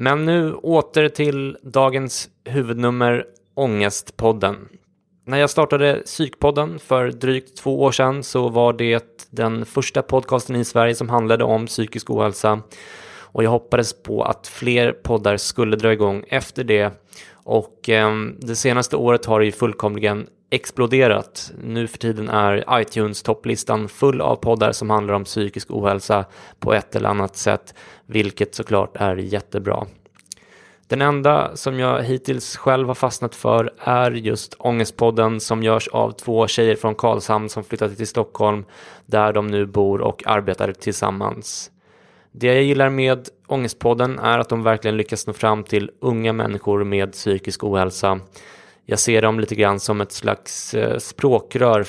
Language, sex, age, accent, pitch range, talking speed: English, male, 20-39, Swedish, 105-125 Hz, 150 wpm